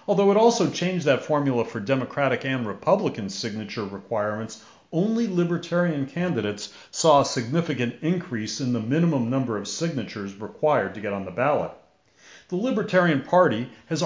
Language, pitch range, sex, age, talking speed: English, 120-165 Hz, male, 40-59, 150 wpm